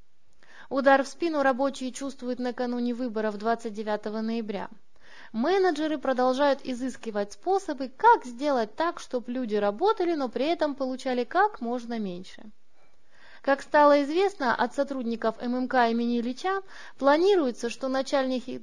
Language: Russian